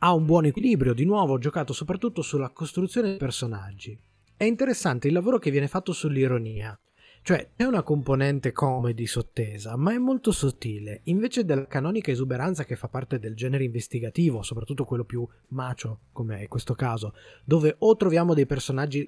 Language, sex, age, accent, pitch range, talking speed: Italian, male, 20-39, native, 125-175 Hz, 175 wpm